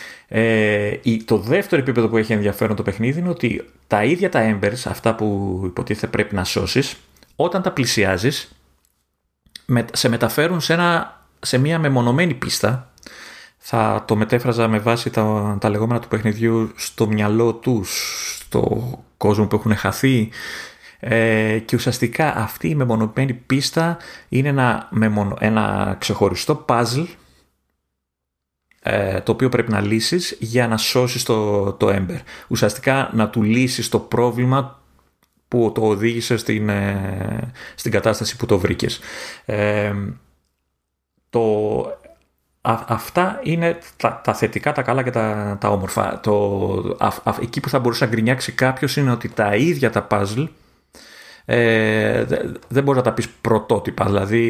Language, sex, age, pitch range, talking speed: Greek, male, 30-49, 105-125 Hz, 140 wpm